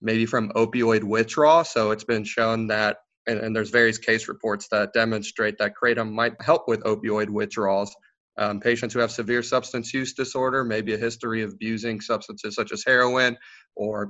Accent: American